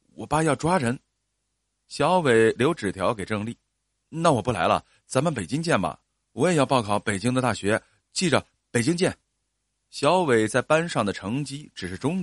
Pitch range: 105-145 Hz